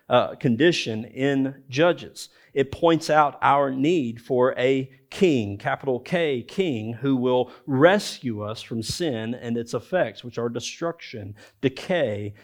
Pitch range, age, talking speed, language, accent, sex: 110-140 Hz, 40-59, 135 wpm, English, American, male